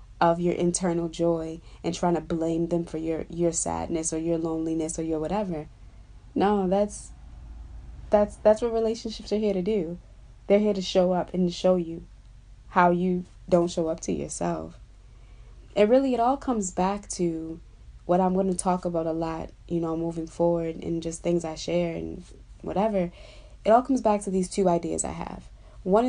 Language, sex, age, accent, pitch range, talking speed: English, female, 20-39, American, 165-200 Hz, 185 wpm